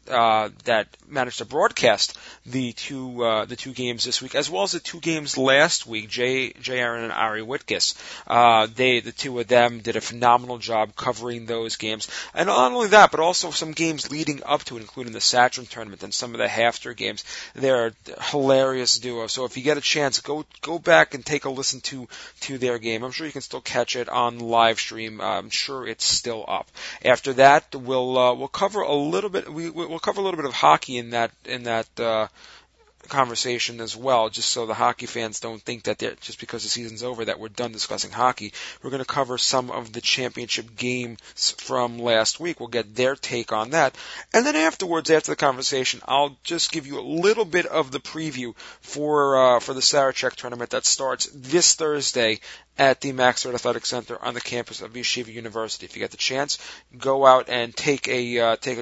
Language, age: English, 40-59